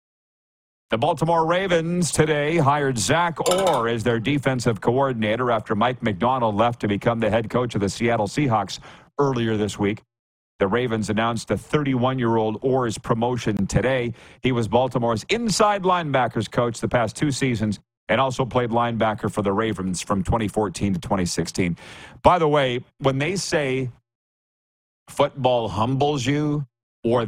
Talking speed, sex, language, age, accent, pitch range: 145 wpm, male, English, 40-59, American, 115-145 Hz